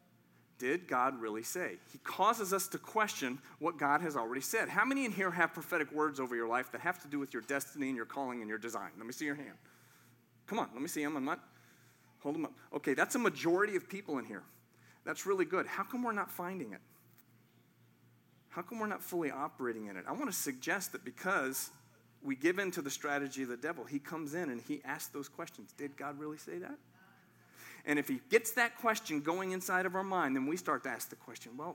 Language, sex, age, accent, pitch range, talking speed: English, male, 40-59, American, 125-180 Hz, 235 wpm